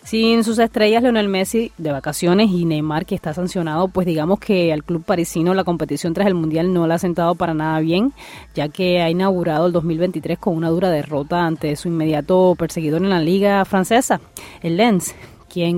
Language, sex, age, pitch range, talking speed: Spanish, female, 20-39, 160-195 Hz, 195 wpm